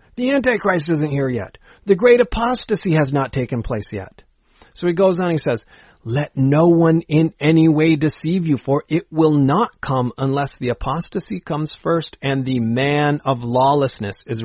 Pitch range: 120-170 Hz